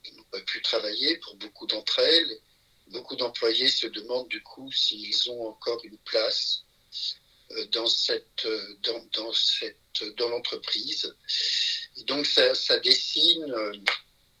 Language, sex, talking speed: French, male, 120 wpm